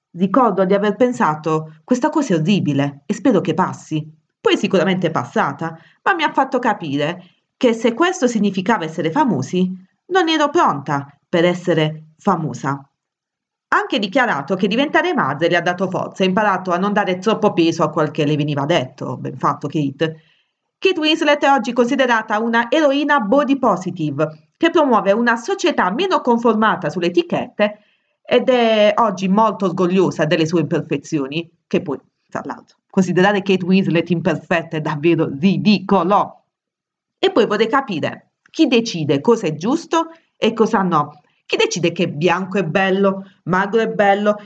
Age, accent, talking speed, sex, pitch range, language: 30-49, native, 160 wpm, female, 170-240 Hz, Italian